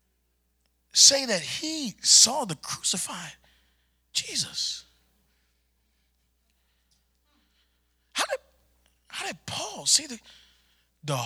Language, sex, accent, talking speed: English, male, American, 80 wpm